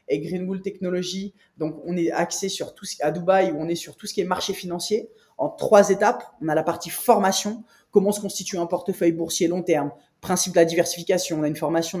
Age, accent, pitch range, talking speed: 20-39, French, 165-205 Hz, 235 wpm